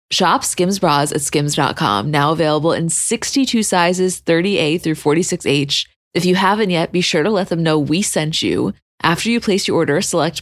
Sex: female